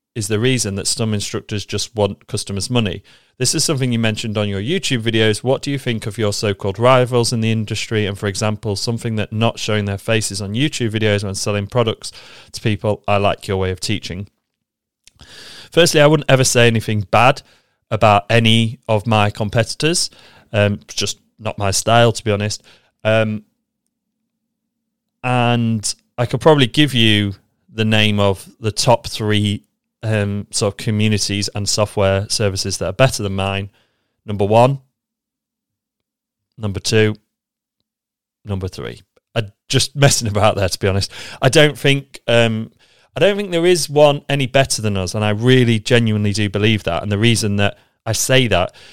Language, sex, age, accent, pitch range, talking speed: English, male, 30-49, British, 105-125 Hz, 170 wpm